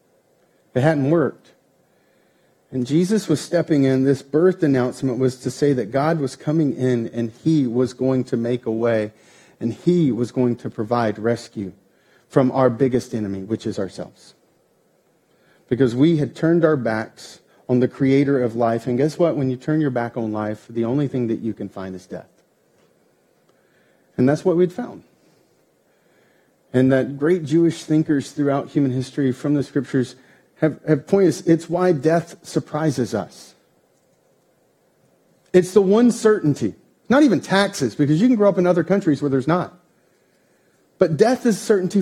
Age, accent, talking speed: 40-59, American, 165 wpm